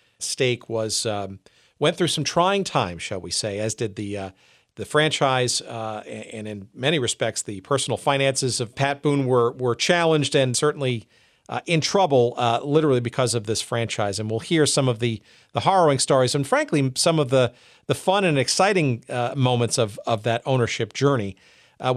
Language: English